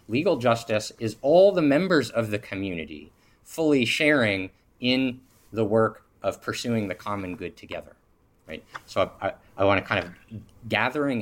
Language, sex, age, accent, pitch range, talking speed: English, male, 30-49, American, 95-120 Hz, 150 wpm